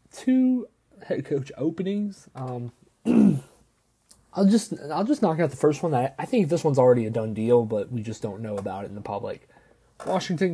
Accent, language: American, English